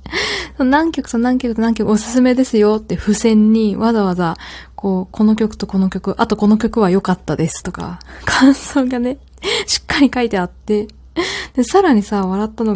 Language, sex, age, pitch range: Japanese, female, 20-39, 195-280 Hz